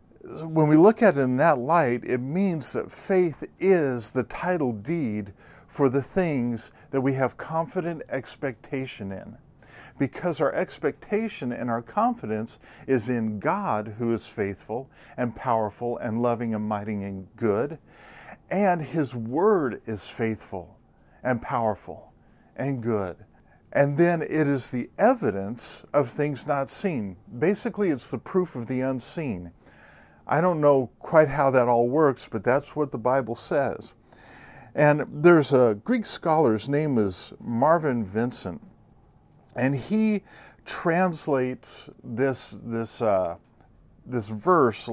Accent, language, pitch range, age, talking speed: American, English, 115-155 Hz, 50-69, 140 wpm